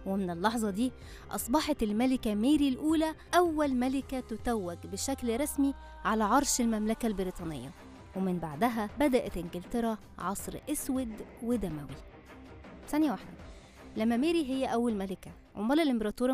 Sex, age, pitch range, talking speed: female, 20-39, 200-270 Hz, 120 wpm